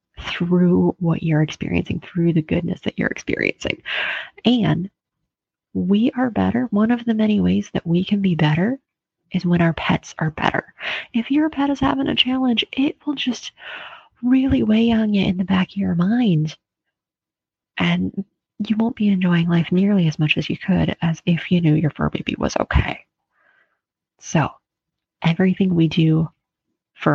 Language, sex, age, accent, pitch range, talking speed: English, female, 30-49, American, 165-225 Hz, 170 wpm